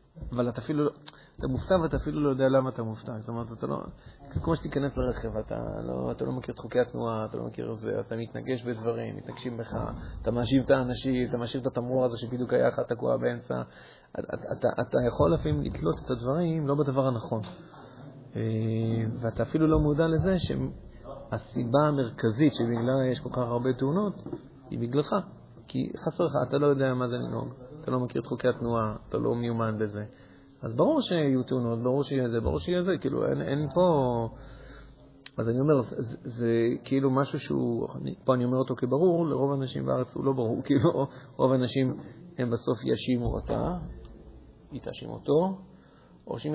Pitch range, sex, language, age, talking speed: 115-140 Hz, male, Hebrew, 30-49, 160 wpm